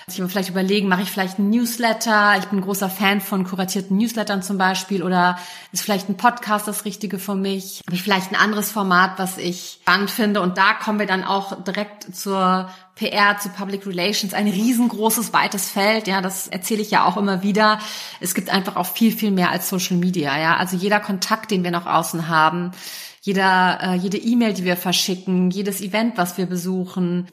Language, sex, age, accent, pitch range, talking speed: German, female, 30-49, German, 180-200 Hz, 200 wpm